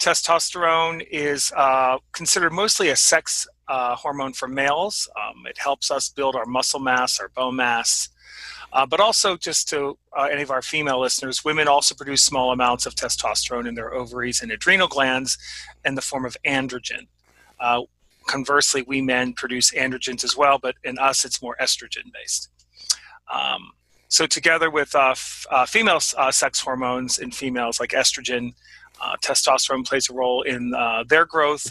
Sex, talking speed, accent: male, 170 wpm, American